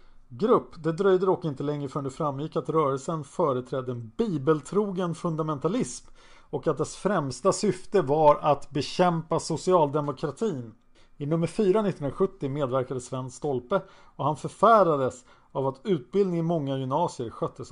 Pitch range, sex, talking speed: 130-170 Hz, male, 140 wpm